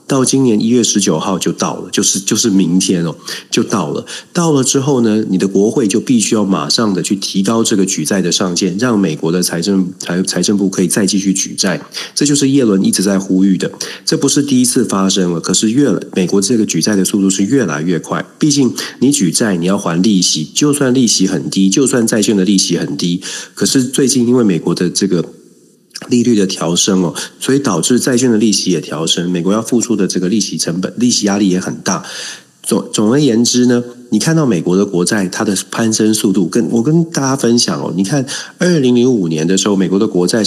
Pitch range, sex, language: 90-125 Hz, male, Chinese